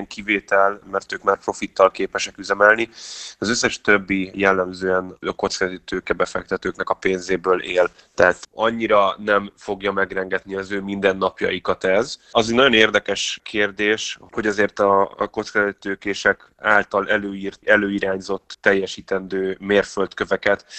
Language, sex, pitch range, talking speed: Hungarian, male, 95-105 Hz, 115 wpm